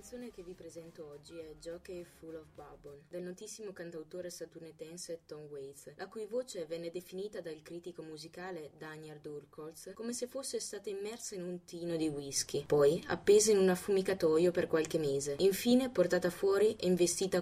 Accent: native